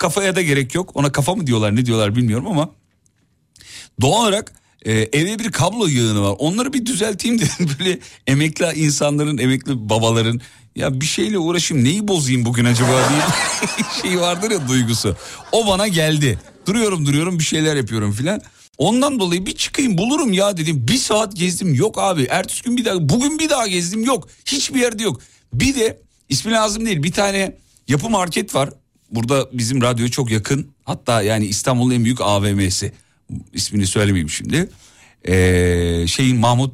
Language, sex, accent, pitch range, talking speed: Turkish, male, native, 125-185 Hz, 165 wpm